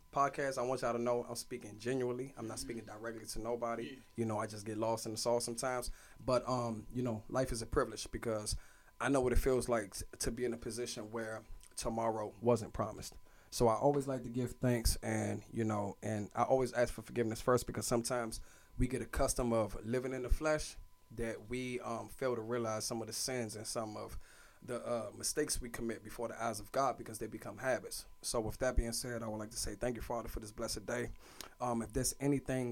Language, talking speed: English, 225 wpm